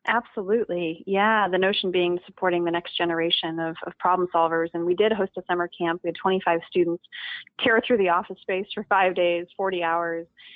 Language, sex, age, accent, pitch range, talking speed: English, female, 20-39, American, 175-220 Hz, 195 wpm